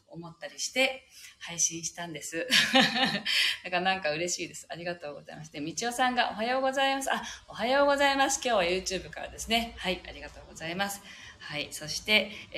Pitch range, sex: 160-220 Hz, female